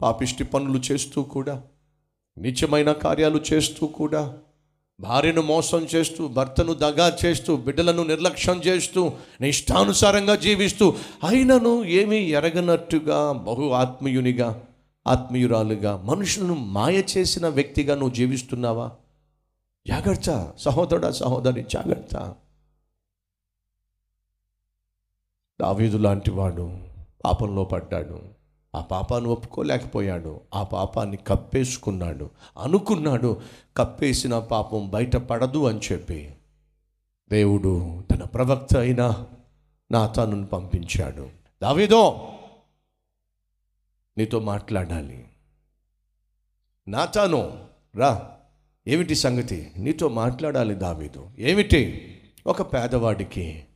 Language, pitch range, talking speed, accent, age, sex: Telugu, 95-150 Hz, 80 wpm, native, 50-69, male